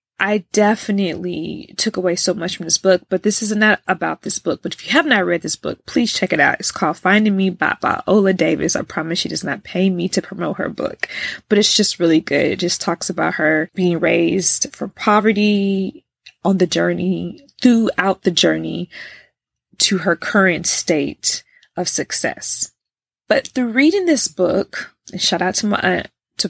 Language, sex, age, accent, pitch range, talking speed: English, female, 20-39, American, 175-215 Hz, 190 wpm